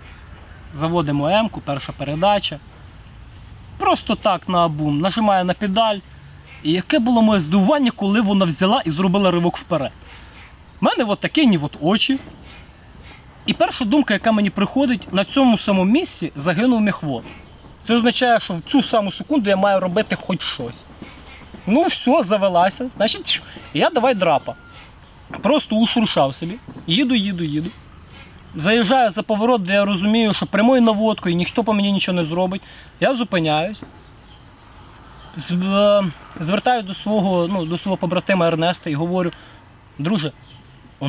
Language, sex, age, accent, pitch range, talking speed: Russian, male, 30-49, native, 155-230 Hz, 145 wpm